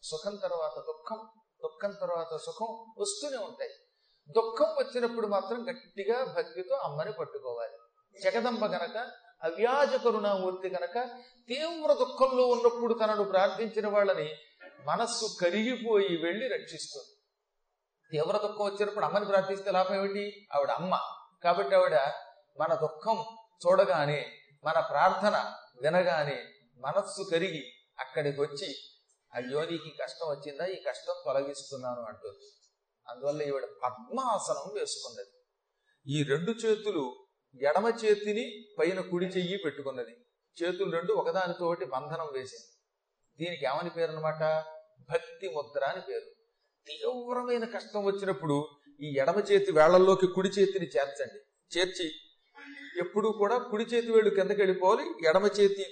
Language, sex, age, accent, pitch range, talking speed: Telugu, male, 40-59, native, 175-255 Hz, 110 wpm